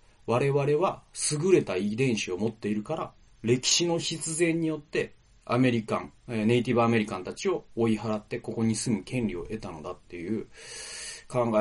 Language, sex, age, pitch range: Japanese, male, 30-49, 110-170 Hz